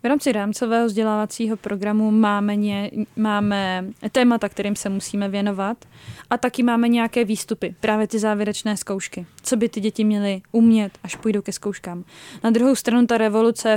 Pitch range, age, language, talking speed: 190-215 Hz, 20-39, Czech, 160 wpm